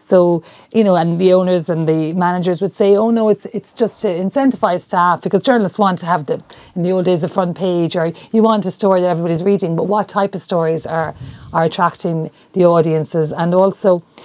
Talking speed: 220 wpm